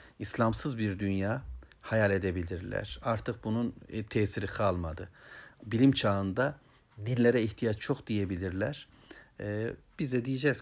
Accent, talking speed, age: native, 100 wpm, 60-79